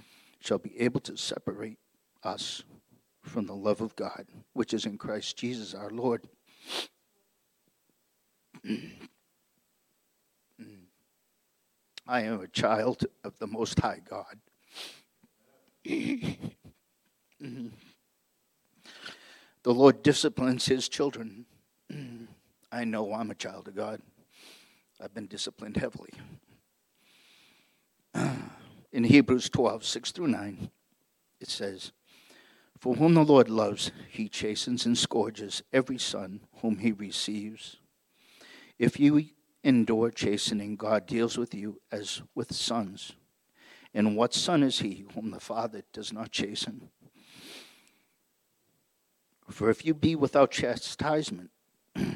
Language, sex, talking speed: English, male, 105 wpm